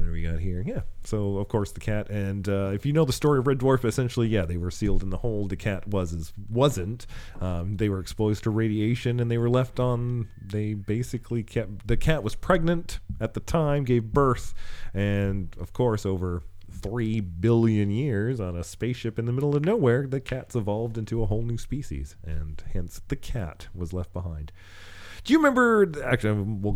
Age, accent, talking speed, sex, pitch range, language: 40-59, American, 200 wpm, male, 95-130 Hz, English